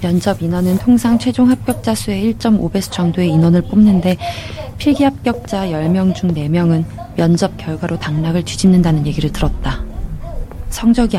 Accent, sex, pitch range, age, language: native, female, 160-200 Hz, 20-39, Korean